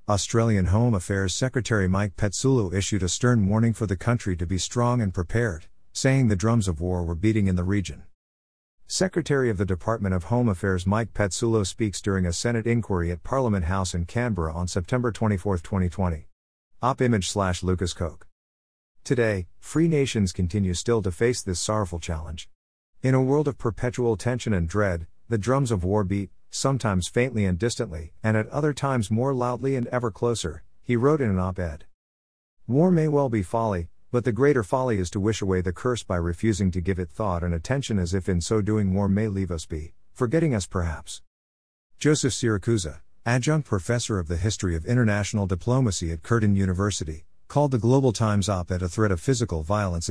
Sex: male